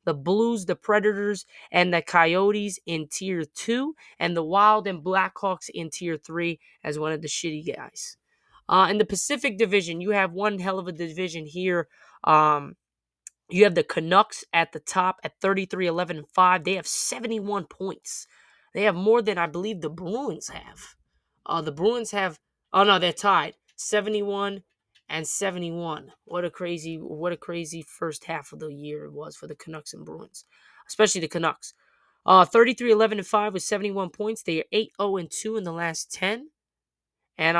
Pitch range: 165-210 Hz